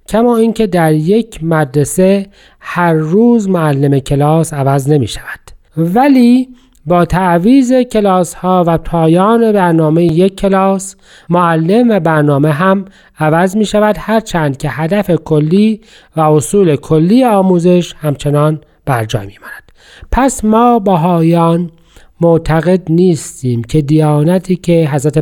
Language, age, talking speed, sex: Persian, 40-59, 120 wpm, male